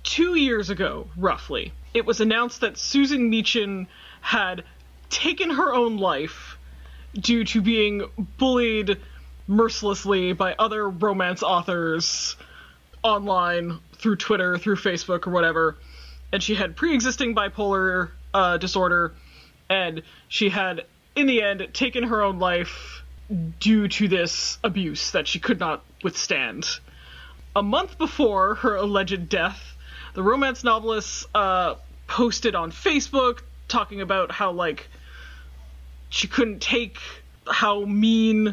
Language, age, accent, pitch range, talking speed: English, 20-39, American, 180-235 Hz, 125 wpm